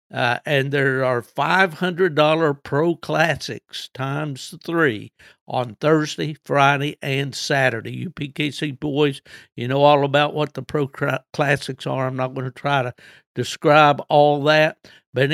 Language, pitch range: English, 130-165 Hz